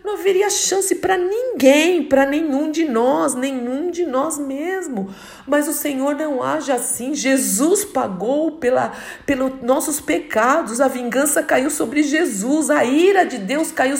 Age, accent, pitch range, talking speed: 50-69, Brazilian, 250-300 Hz, 145 wpm